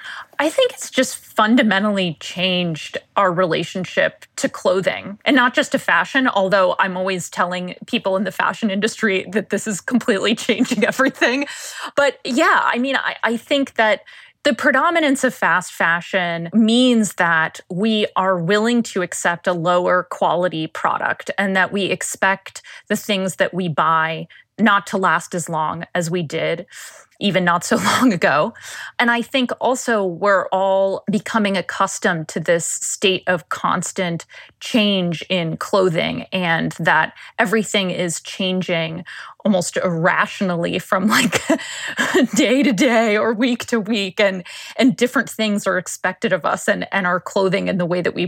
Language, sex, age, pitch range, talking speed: English, female, 20-39, 180-225 Hz, 155 wpm